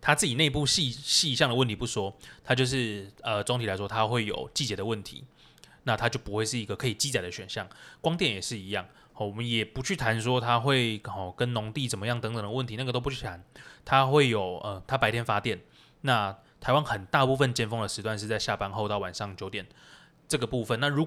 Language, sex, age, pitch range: Chinese, male, 20-39, 105-130 Hz